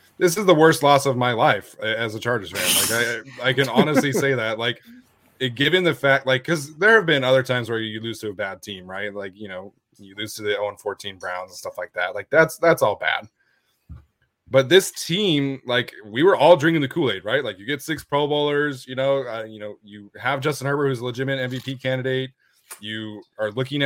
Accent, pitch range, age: American, 115-140 Hz, 20-39